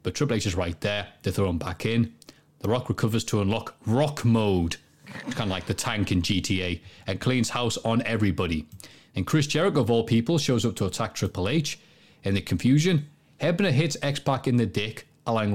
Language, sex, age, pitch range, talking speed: English, male, 30-49, 110-150 Hz, 200 wpm